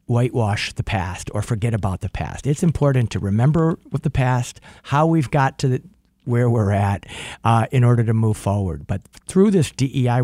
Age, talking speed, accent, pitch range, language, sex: 50-69, 195 wpm, American, 110-140 Hz, English, male